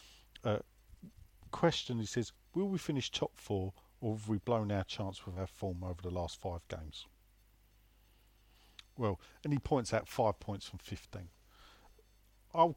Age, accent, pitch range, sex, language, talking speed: 40-59, British, 95-115 Hz, male, English, 155 wpm